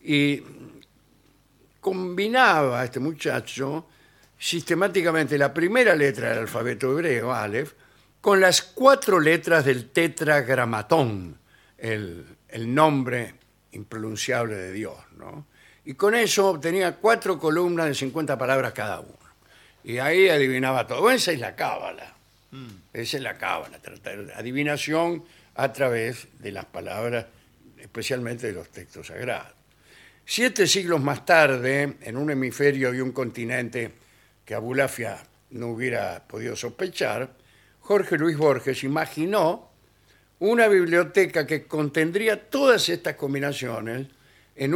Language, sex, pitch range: Spanish, male, 120-165 Hz